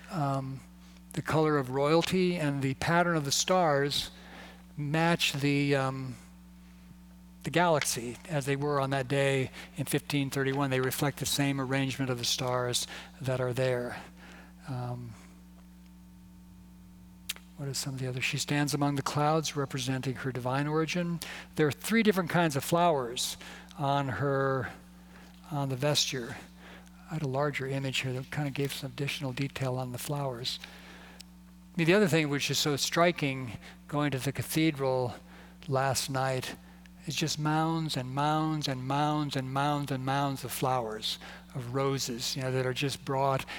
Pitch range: 125-150 Hz